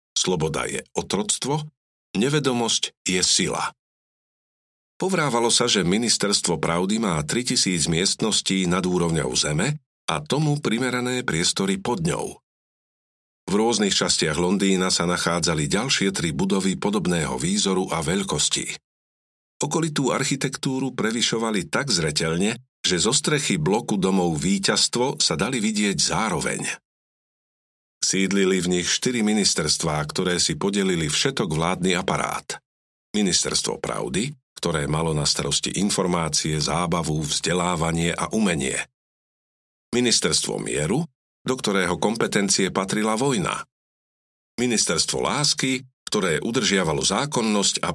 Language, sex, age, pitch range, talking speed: Slovak, male, 50-69, 90-140 Hz, 110 wpm